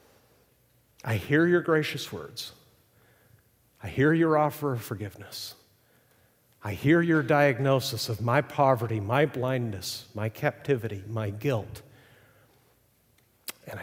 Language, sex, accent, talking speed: English, male, American, 110 wpm